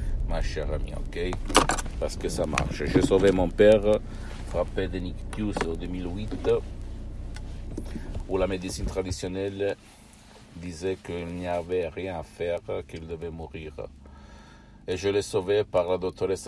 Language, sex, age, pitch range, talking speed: Italian, male, 60-79, 85-105 Hz, 140 wpm